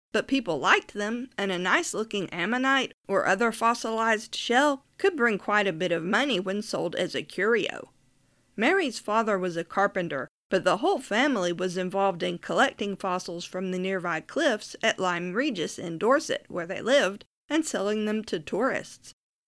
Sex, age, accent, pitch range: female, 40-59, American, 180-255 Hz